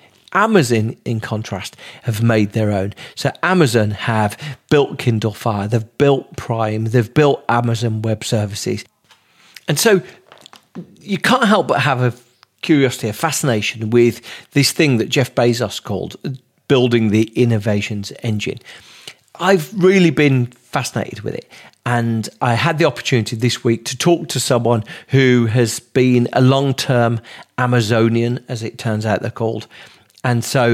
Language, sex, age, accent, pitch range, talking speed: English, male, 40-59, British, 115-135 Hz, 145 wpm